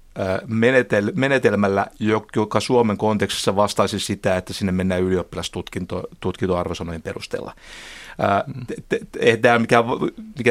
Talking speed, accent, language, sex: 70 wpm, native, Finnish, male